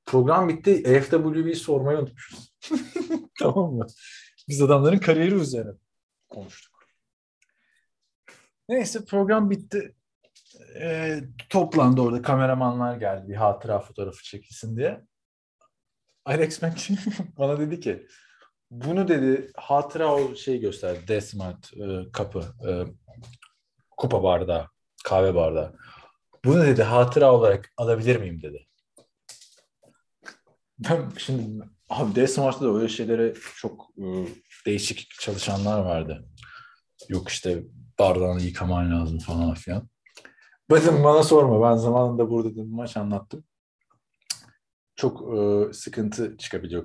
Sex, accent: male, native